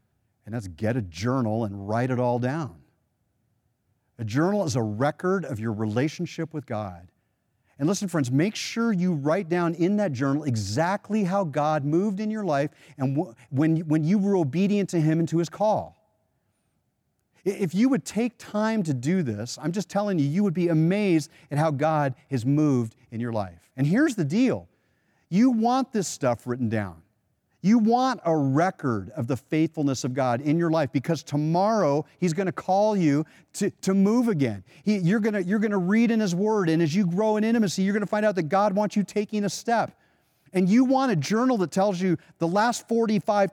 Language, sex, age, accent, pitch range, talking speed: English, male, 40-59, American, 140-205 Hz, 195 wpm